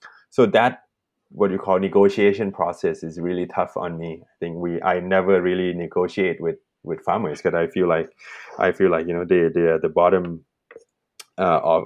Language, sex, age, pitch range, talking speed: English, male, 20-39, 85-100 Hz, 185 wpm